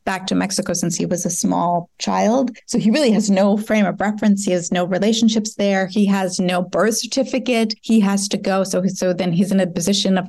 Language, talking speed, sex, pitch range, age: English, 225 wpm, female, 185-215 Hz, 30-49